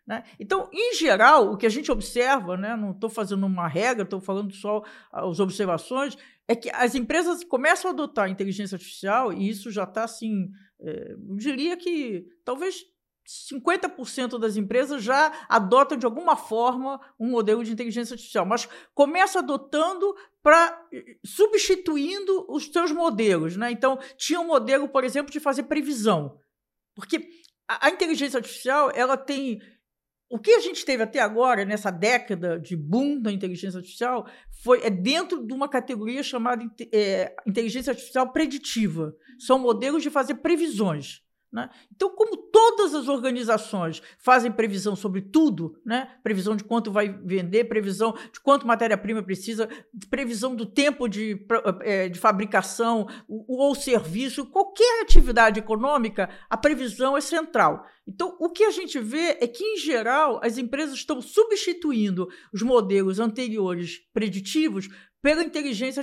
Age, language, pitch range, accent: 50-69, Portuguese, 210-295 Hz, Brazilian